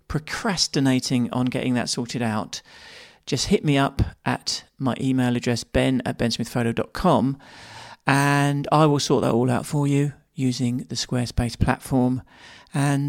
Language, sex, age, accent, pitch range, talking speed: English, male, 40-59, British, 130-160 Hz, 140 wpm